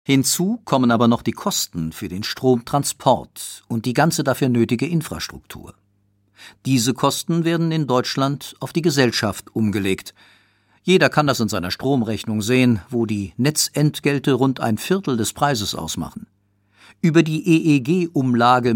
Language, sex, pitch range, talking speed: German, male, 105-150 Hz, 140 wpm